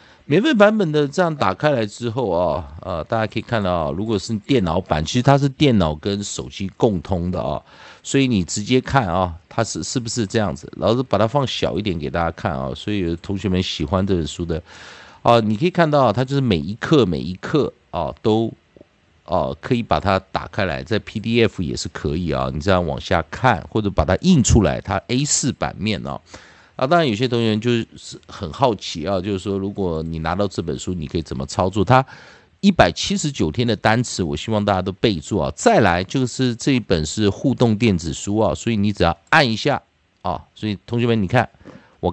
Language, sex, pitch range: Chinese, male, 90-125 Hz